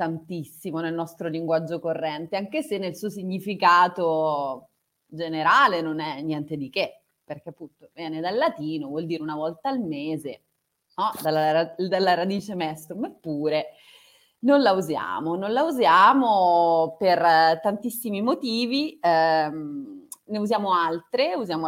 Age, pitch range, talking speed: 30-49, 160-215 Hz, 130 wpm